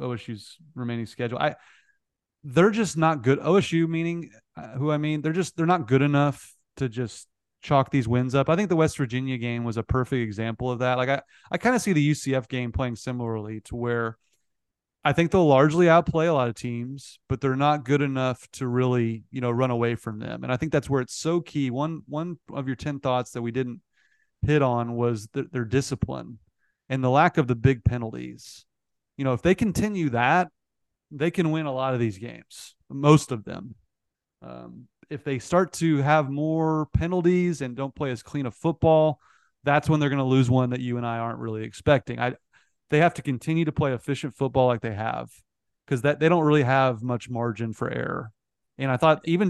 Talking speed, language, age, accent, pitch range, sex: 210 wpm, English, 30-49, American, 120-150 Hz, male